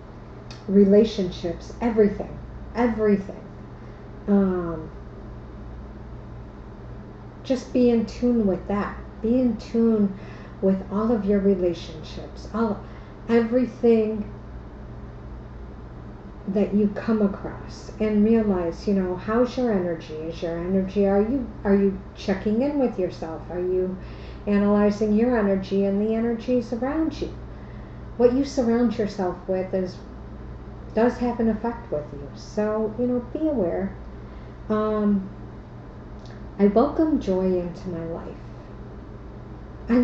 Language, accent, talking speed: English, American, 115 wpm